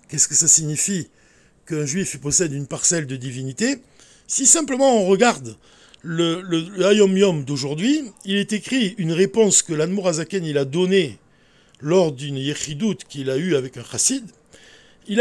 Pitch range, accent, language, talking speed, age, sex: 160-230 Hz, French, French, 160 wpm, 50-69, male